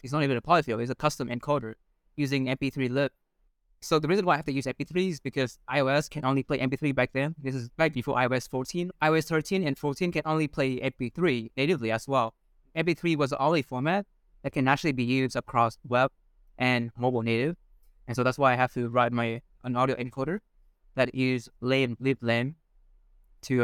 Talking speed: 205 wpm